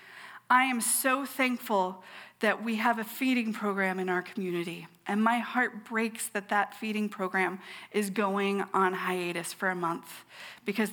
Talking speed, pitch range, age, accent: 160 wpm, 200-245 Hz, 40-59, American